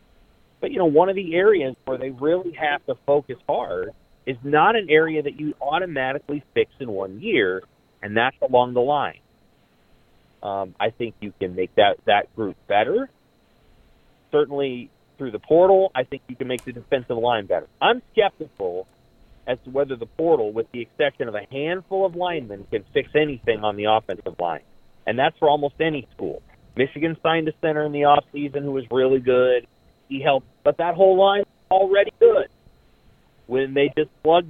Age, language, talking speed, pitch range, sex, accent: 30-49, English, 185 wpm, 130-165 Hz, male, American